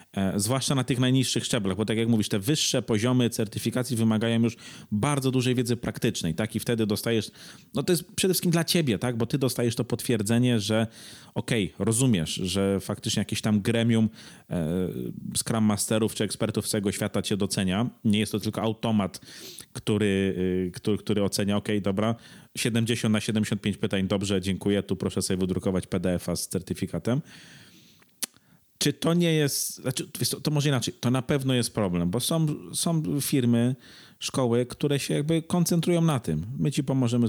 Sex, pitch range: male, 105-130 Hz